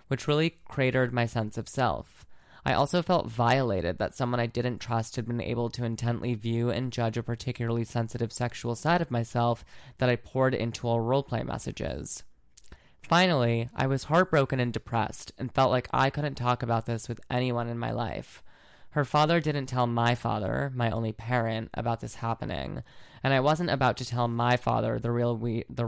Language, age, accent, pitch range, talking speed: English, 20-39, American, 115-130 Hz, 185 wpm